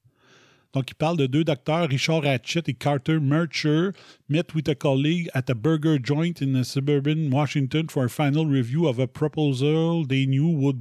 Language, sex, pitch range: French, male, 125-155 Hz